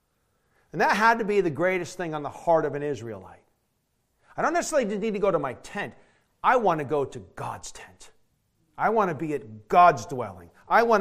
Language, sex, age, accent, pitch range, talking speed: English, male, 40-59, American, 145-210 Hz, 215 wpm